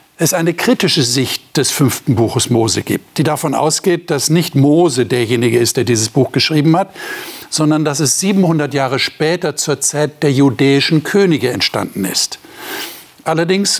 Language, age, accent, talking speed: German, 60-79, German, 155 wpm